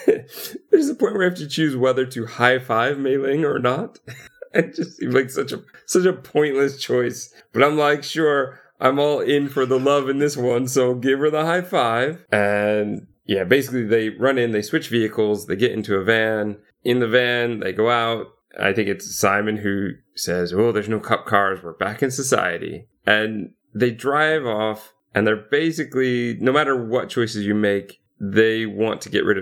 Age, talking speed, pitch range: 30-49, 200 wpm, 105-135 Hz